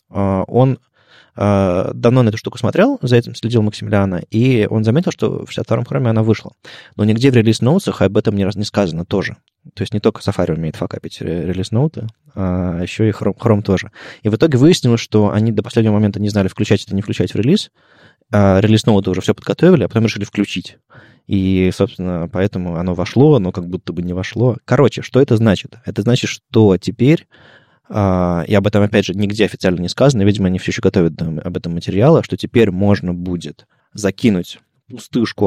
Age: 20-39